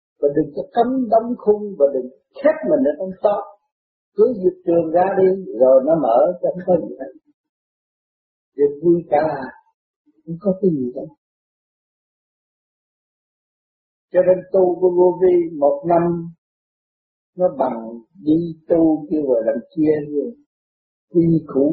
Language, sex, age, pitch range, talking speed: Vietnamese, male, 50-69, 155-210 Hz, 145 wpm